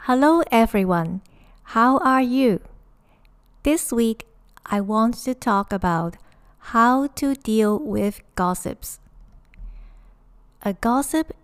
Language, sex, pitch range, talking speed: English, female, 190-240 Hz, 100 wpm